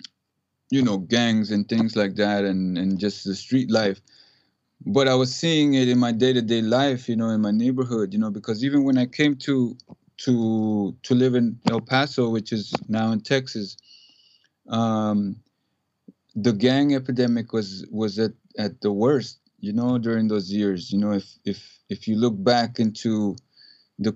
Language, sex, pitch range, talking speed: English, male, 105-130 Hz, 175 wpm